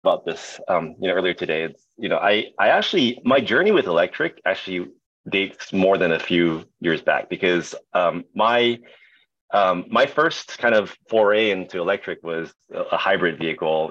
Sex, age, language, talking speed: male, 30-49, English, 175 wpm